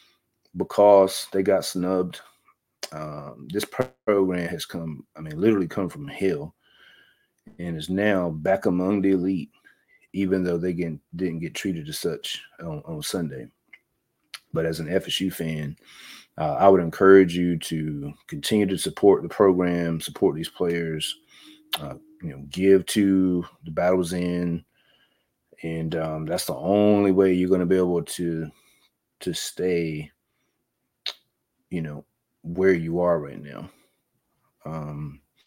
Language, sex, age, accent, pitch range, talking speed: English, male, 30-49, American, 85-100 Hz, 140 wpm